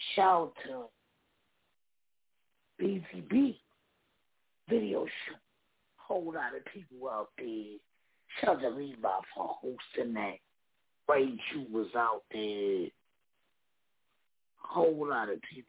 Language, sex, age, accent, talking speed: English, male, 60-79, American, 105 wpm